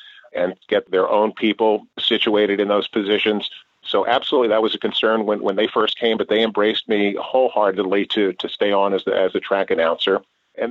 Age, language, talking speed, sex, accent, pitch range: 50-69, English, 200 wpm, male, American, 100-150 Hz